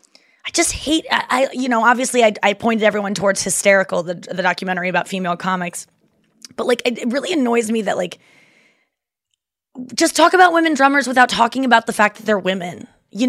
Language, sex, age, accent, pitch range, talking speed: English, female, 20-39, American, 200-260 Hz, 185 wpm